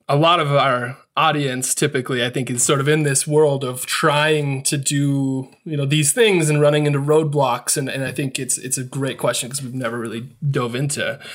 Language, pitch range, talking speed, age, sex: English, 125-150 Hz, 215 wpm, 20-39, male